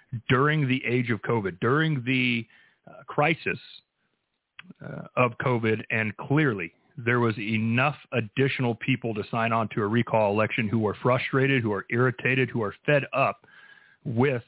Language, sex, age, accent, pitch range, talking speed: English, male, 40-59, American, 110-130 Hz, 155 wpm